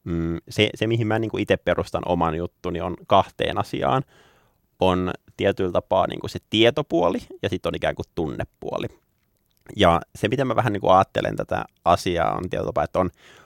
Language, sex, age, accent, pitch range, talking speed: Finnish, male, 30-49, native, 95-120 Hz, 170 wpm